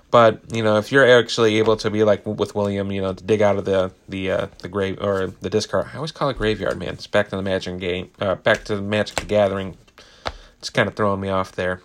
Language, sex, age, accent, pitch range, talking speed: English, male, 30-49, American, 95-125 Hz, 260 wpm